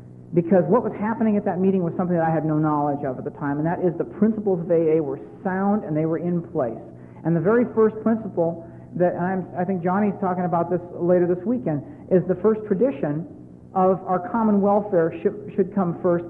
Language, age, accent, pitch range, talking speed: English, 50-69, American, 155-195 Hz, 215 wpm